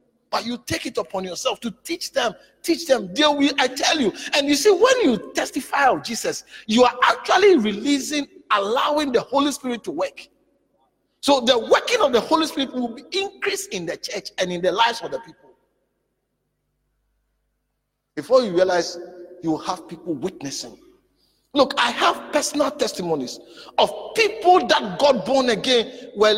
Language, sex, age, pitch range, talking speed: English, male, 50-69, 235-320 Hz, 170 wpm